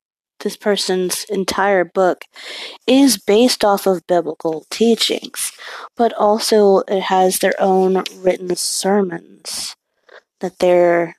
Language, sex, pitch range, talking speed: English, female, 180-245 Hz, 105 wpm